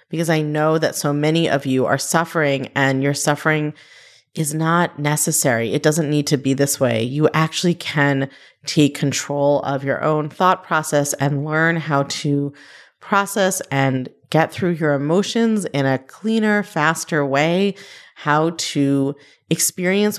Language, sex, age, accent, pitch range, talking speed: English, female, 30-49, American, 140-185 Hz, 150 wpm